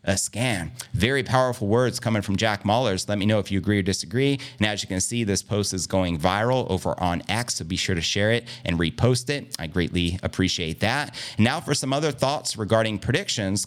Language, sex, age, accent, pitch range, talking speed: English, male, 30-49, American, 95-120 Hz, 225 wpm